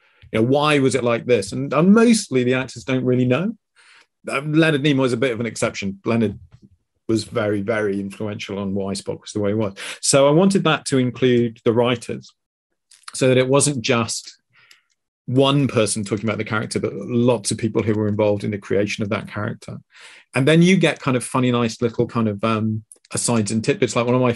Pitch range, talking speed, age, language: 115-140 Hz, 215 wpm, 40-59, English